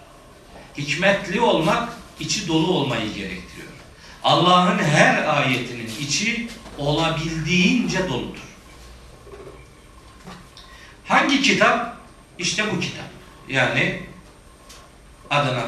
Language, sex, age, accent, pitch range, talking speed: Turkish, male, 50-69, native, 140-185 Hz, 75 wpm